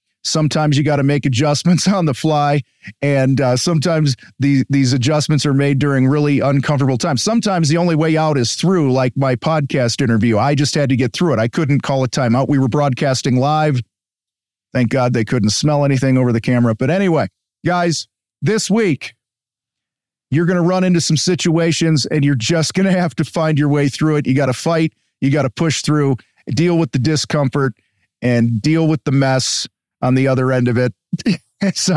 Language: English